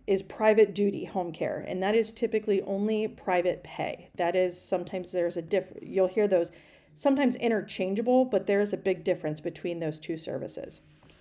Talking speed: 170 wpm